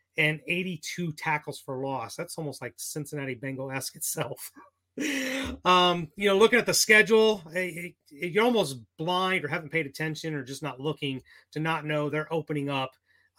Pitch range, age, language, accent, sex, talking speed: 145-185 Hz, 30-49, English, American, male, 175 wpm